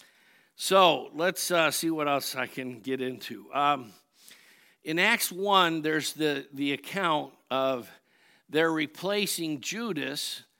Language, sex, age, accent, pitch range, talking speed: English, male, 60-79, American, 135-160 Hz, 125 wpm